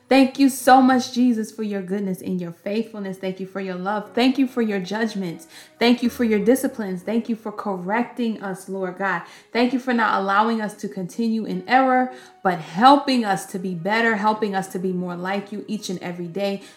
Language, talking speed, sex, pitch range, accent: English, 215 wpm, female, 195-230 Hz, American